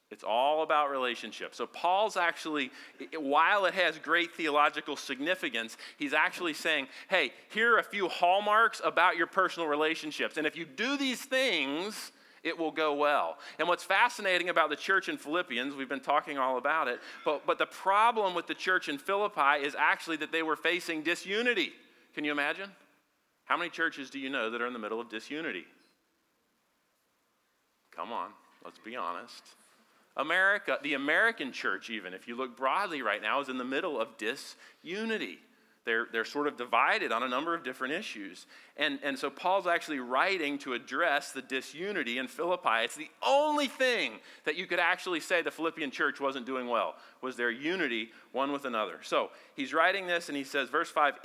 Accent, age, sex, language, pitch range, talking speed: American, 40-59, male, English, 130-185 Hz, 185 wpm